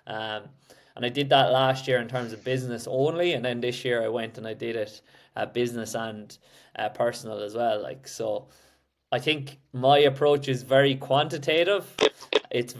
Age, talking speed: 20-39, 185 wpm